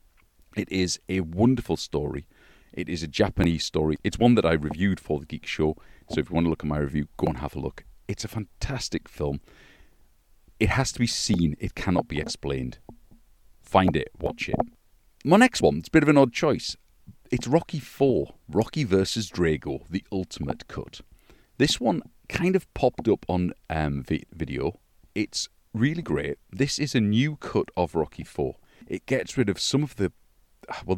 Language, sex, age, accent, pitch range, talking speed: English, male, 40-59, British, 85-125 Hz, 190 wpm